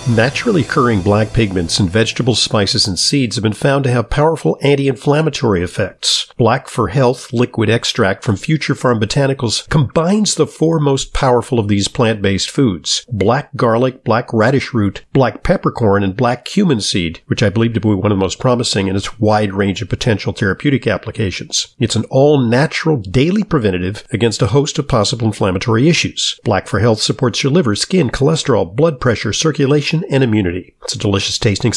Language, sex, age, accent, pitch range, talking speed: English, male, 50-69, American, 115-150 Hz, 175 wpm